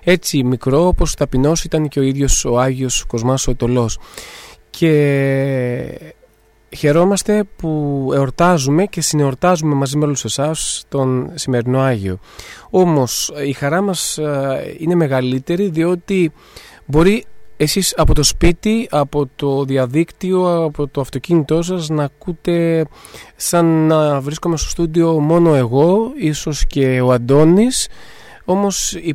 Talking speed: 120 wpm